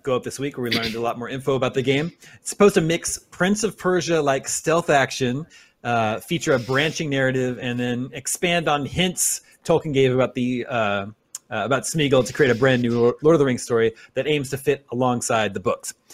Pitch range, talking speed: 125-160 Hz, 220 wpm